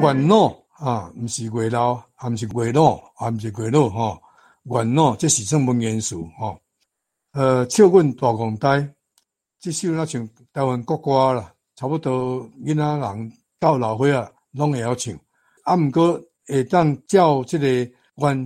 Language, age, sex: Chinese, 60-79, male